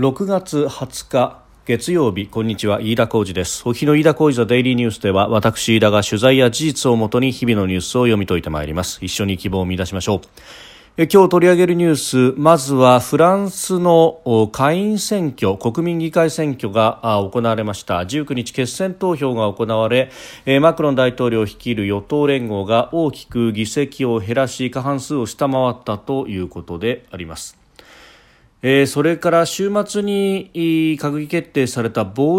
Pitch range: 110-150 Hz